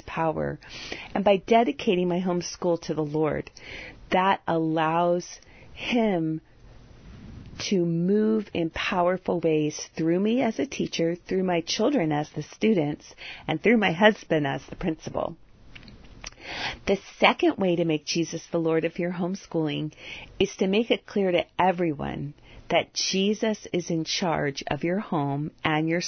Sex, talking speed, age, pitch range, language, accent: female, 145 wpm, 40-59, 160-195 Hz, English, American